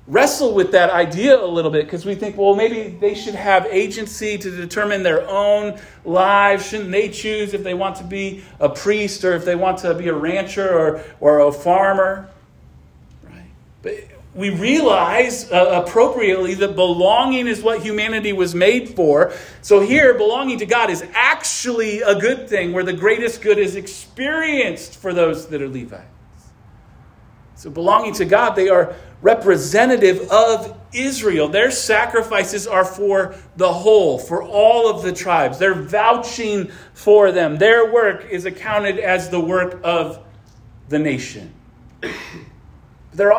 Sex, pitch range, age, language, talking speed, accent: male, 180-215 Hz, 40-59, English, 155 wpm, American